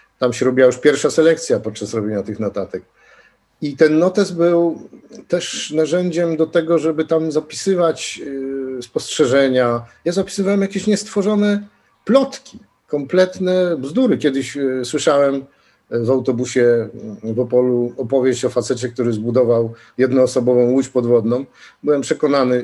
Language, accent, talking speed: Polish, native, 120 wpm